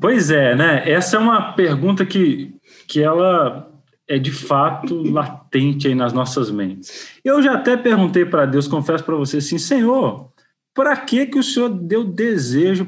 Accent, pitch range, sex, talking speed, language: Brazilian, 150-210 Hz, male, 170 wpm, Portuguese